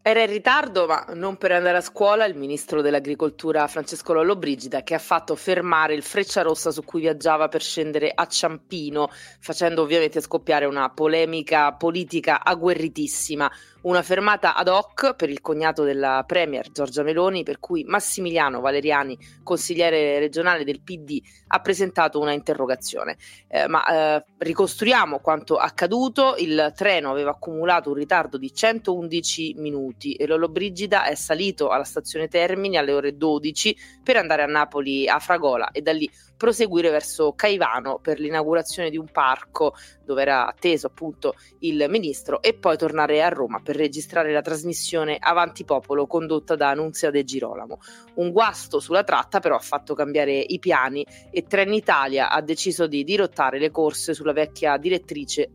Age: 30-49